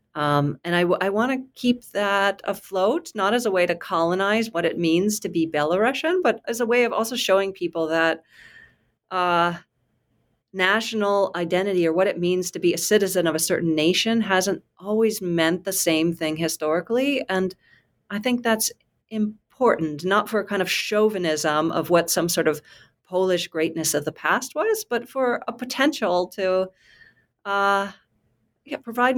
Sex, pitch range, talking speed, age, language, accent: female, 165-205 Hz, 165 wpm, 40-59, English, American